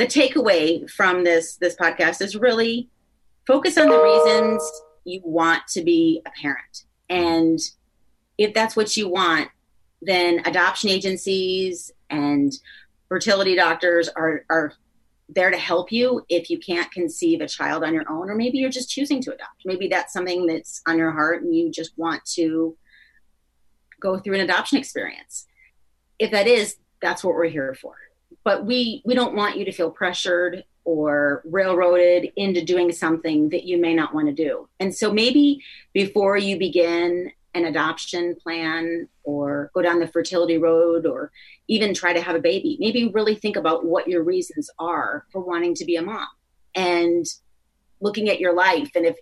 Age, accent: 30-49, American